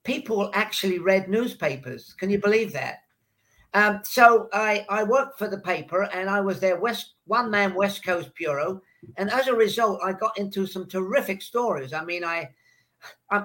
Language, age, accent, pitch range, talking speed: English, 50-69, British, 160-200 Hz, 170 wpm